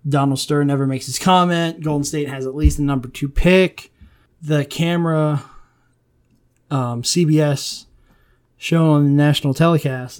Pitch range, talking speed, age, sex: 135-160 Hz, 140 wpm, 20-39, male